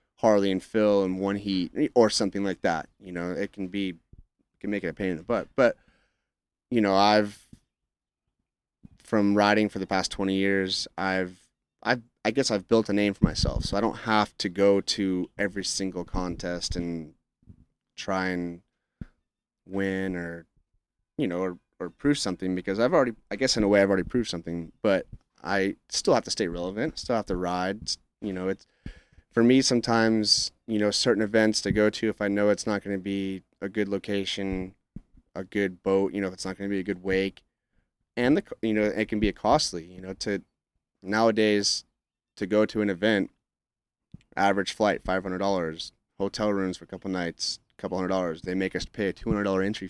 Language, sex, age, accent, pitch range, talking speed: English, male, 30-49, American, 95-105 Hz, 195 wpm